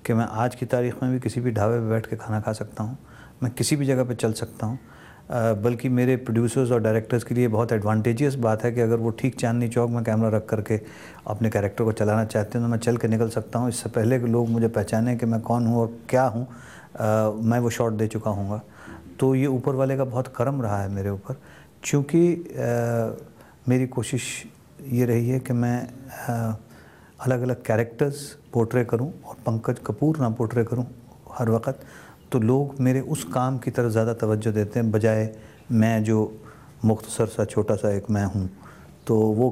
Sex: male